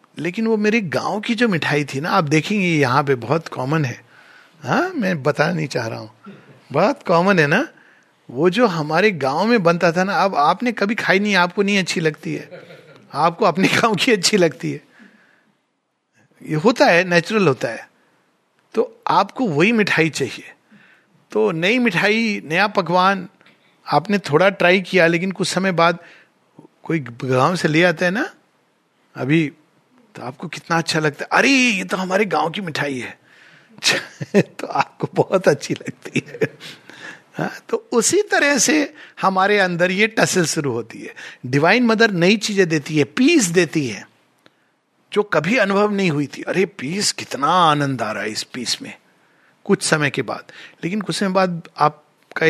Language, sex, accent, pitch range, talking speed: Hindi, male, native, 155-215 Hz, 165 wpm